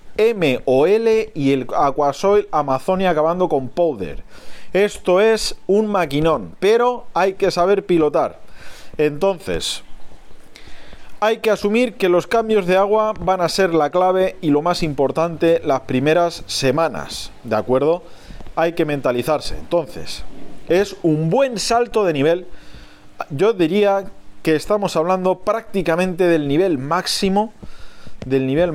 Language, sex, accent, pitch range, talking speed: Spanish, male, Spanish, 145-190 Hz, 125 wpm